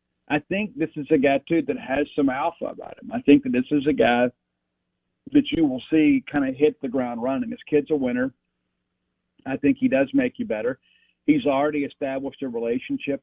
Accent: American